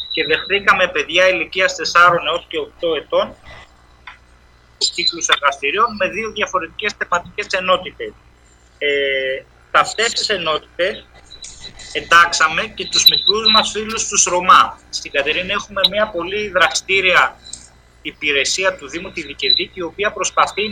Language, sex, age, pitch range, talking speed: Greek, male, 30-49, 140-195 Hz, 125 wpm